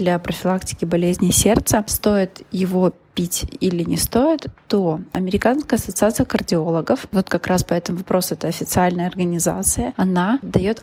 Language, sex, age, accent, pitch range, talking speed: Russian, female, 20-39, native, 180-210 Hz, 140 wpm